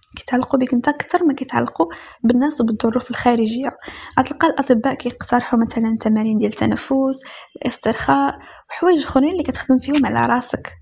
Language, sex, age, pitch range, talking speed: Arabic, female, 10-29, 235-280 Hz, 135 wpm